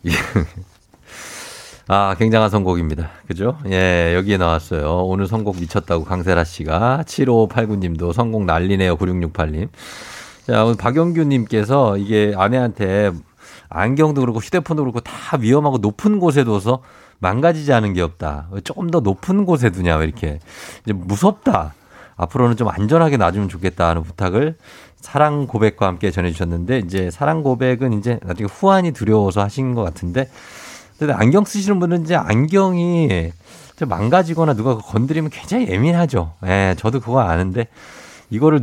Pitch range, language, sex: 95-140 Hz, Korean, male